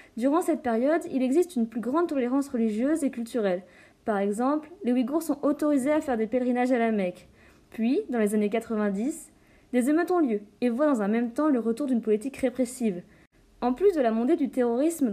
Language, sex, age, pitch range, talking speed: French, female, 20-39, 225-285 Hz, 205 wpm